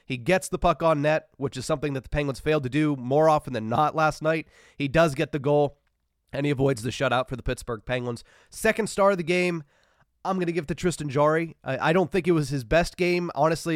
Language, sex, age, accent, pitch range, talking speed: English, male, 30-49, American, 135-160 Hz, 250 wpm